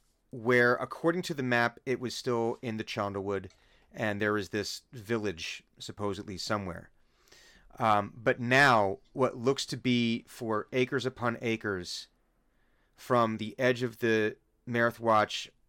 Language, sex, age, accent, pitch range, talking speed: English, male, 30-49, American, 100-120 Hz, 135 wpm